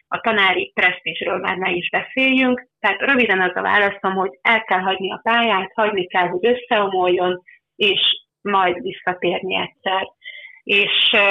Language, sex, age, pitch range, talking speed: Hungarian, female, 30-49, 180-225 Hz, 145 wpm